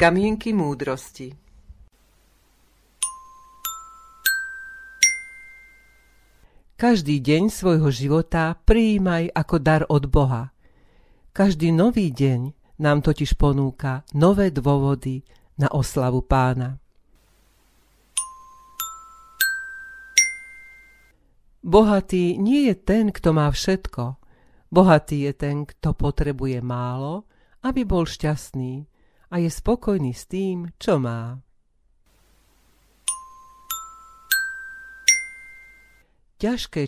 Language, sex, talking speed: Slovak, female, 75 wpm